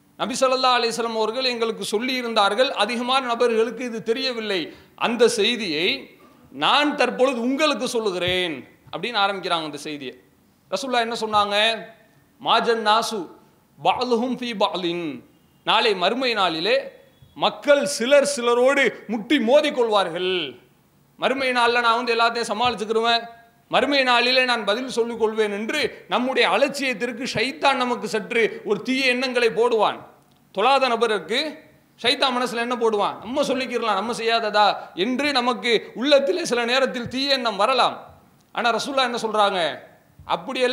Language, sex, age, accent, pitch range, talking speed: English, male, 40-59, Indian, 225-270 Hz, 120 wpm